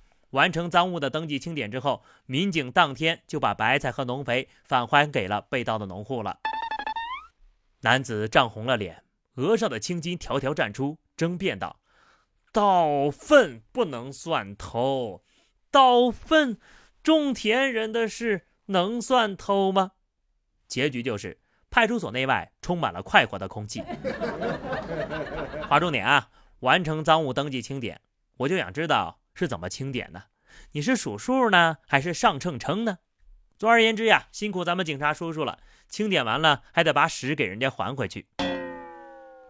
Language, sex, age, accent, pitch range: Chinese, male, 30-49, native, 130-210 Hz